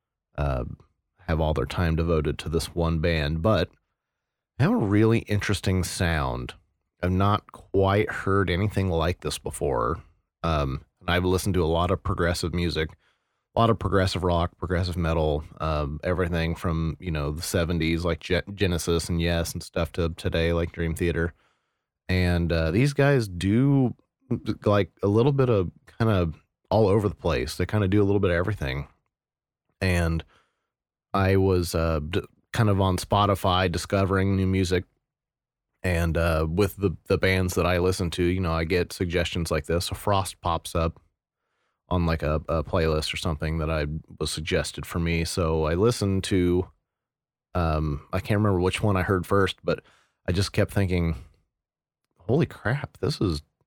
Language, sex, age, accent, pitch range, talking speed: English, male, 30-49, American, 80-100 Hz, 175 wpm